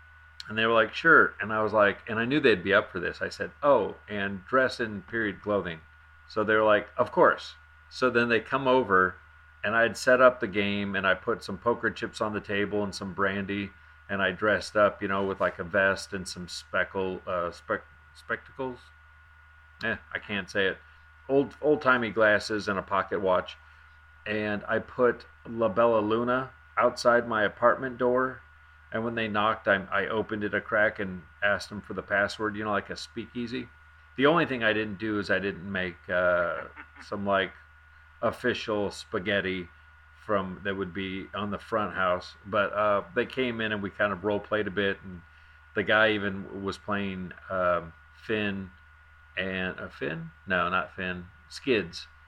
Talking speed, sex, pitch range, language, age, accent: 190 wpm, male, 85-110 Hz, English, 40-59, American